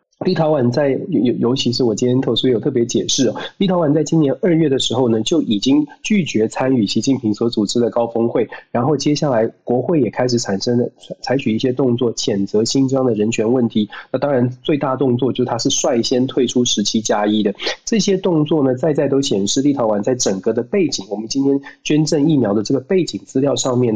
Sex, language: male, Chinese